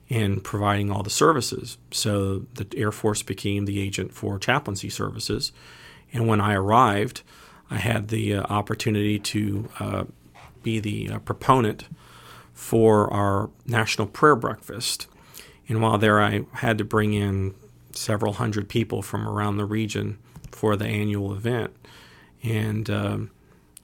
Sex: male